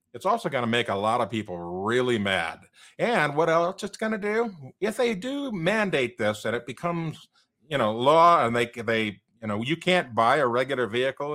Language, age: English, 50-69